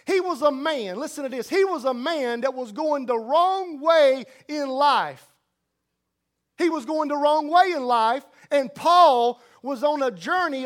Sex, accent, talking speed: male, American, 185 wpm